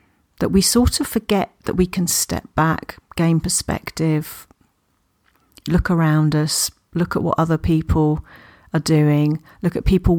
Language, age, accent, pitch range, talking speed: English, 40-59, British, 150-185 Hz, 145 wpm